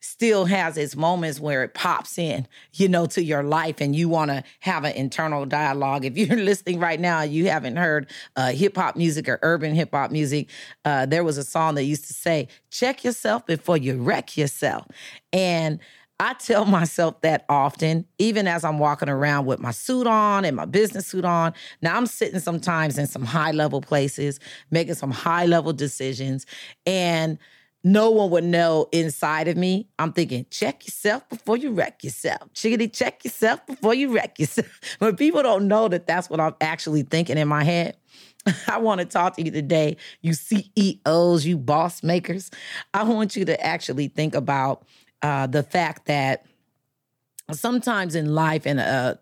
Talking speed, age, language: 185 wpm, 40-59, English